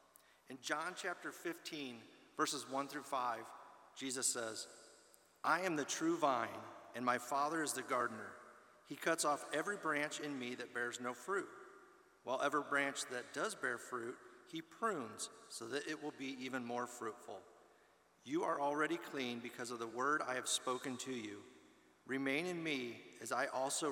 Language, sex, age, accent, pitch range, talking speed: English, male, 40-59, American, 120-150 Hz, 170 wpm